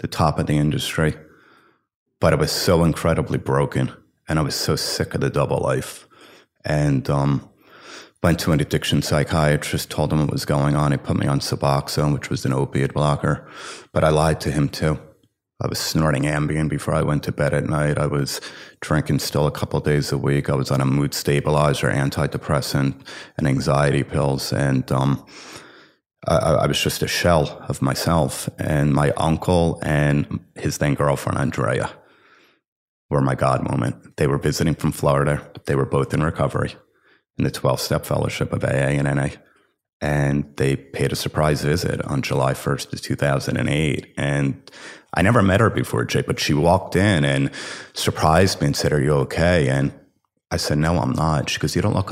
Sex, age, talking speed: male, 30-49, 185 wpm